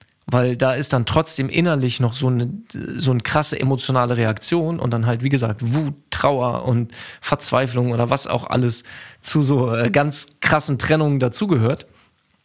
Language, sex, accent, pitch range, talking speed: German, male, German, 120-150 Hz, 155 wpm